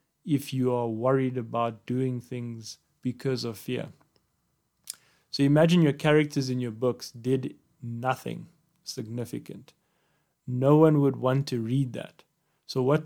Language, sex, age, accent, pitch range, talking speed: English, male, 30-49, South African, 120-140 Hz, 135 wpm